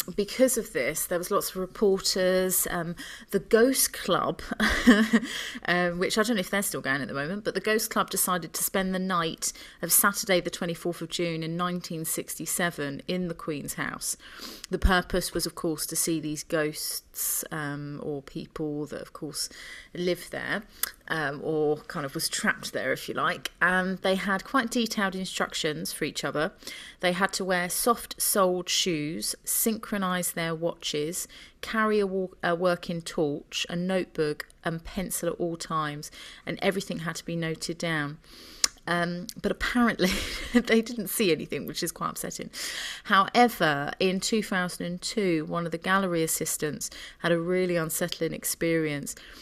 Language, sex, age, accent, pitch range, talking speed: English, female, 30-49, British, 165-195 Hz, 165 wpm